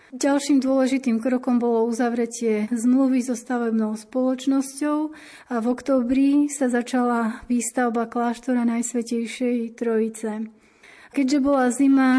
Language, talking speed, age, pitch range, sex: Slovak, 105 wpm, 30-49, 235-260 Hz, female